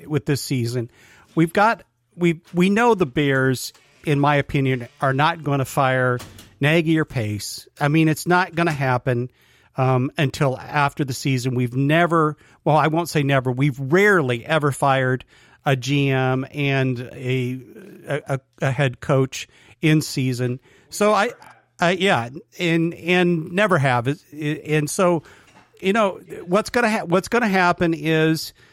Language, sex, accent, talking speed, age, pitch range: English, male, American, 150 wpm, 50-69, 135-170 Hz